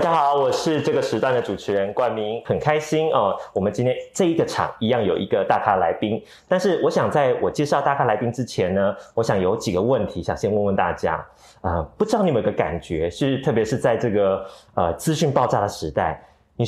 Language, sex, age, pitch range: Chinese, male, 30-49, 110-165 Hz